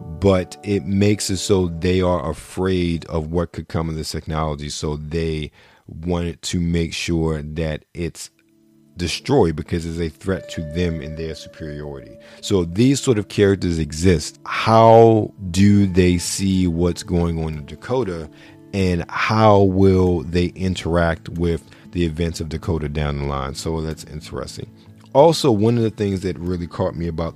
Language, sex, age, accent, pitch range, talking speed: English, male, 40-59, American, 80-95 Hz, 160 wpm